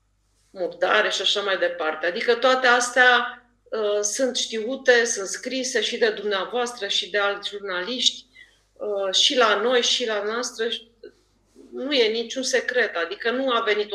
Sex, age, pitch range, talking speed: female, 40-59, 190-255 Hz, 150 wpm